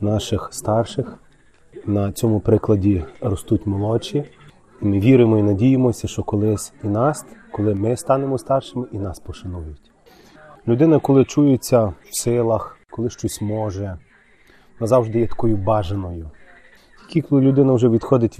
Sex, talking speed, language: male, 125 wpm, Ukrainian